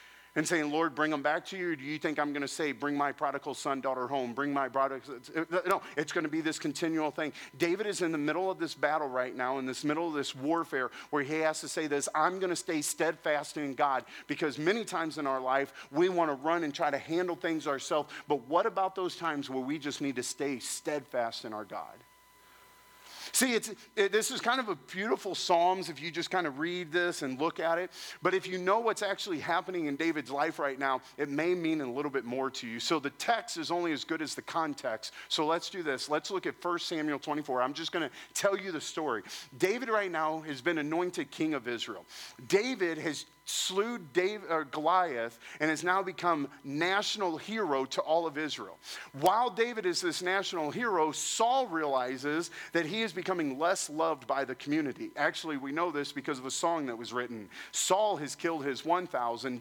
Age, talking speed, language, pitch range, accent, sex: 40-59, 220 wpm, English, 145-185 Hz, American, male